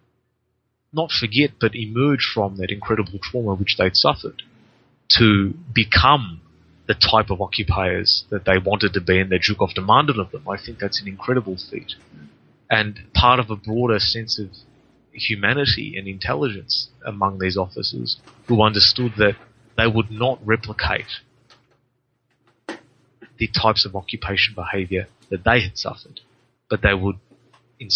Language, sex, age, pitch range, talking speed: English, male, 30-49, 95-120 Hz, 145 wpm